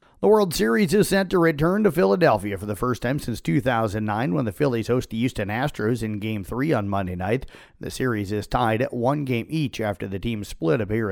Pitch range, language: 110-150 Hz, English